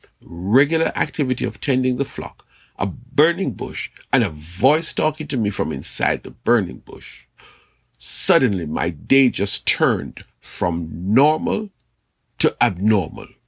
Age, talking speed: 50-69, 130 wpm